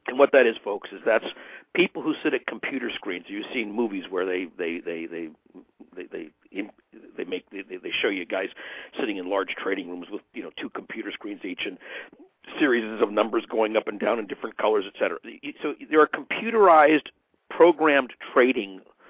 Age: 60-79